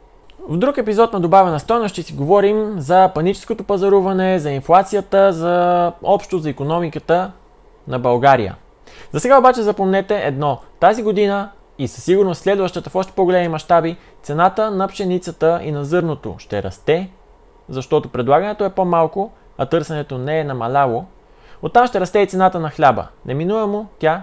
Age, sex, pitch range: 20-39, male, 130-190 Hz